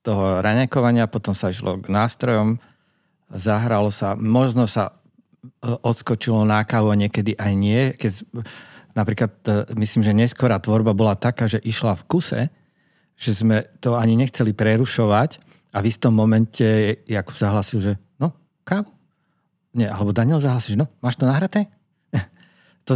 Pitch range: 100-120 Hz